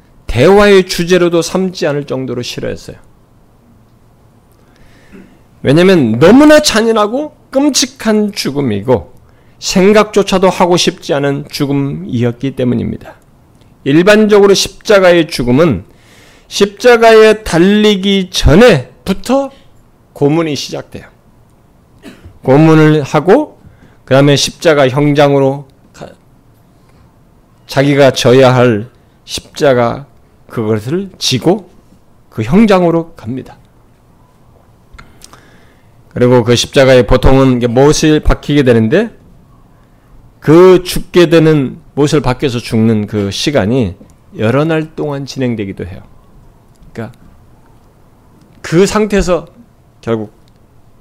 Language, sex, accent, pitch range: Korean, male, native, 120-185 Hz